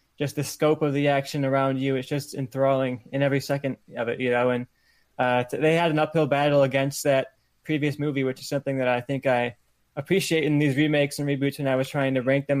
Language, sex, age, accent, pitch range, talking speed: English, male, 20-39, American, 135-145 Hz, 235 wpm